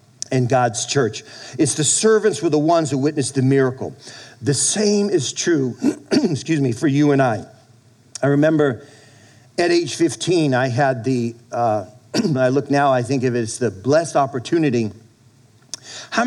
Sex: male